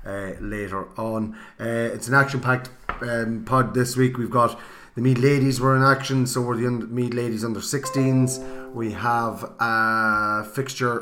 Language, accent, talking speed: English, Irish, 165 wpm